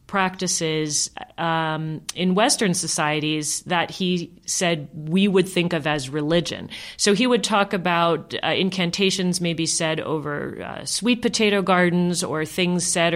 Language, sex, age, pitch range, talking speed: English, female, 40-59, 155-185 Hz, 140 wpm